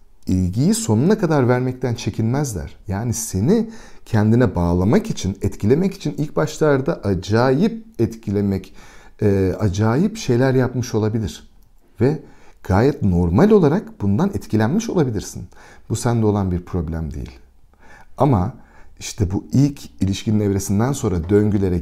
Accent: native